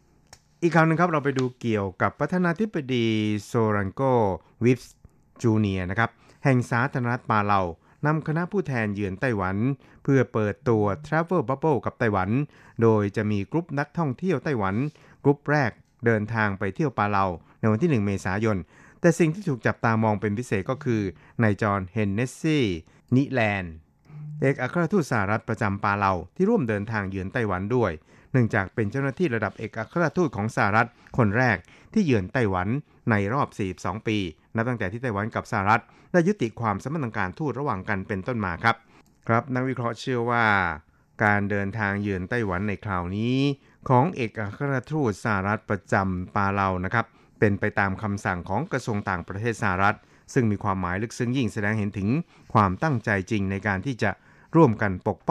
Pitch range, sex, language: 100-135 Hz, male, Thai